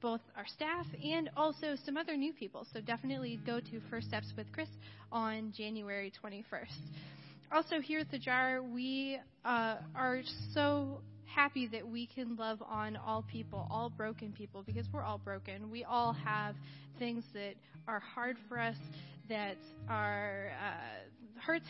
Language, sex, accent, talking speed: English, female, American, 160 wpm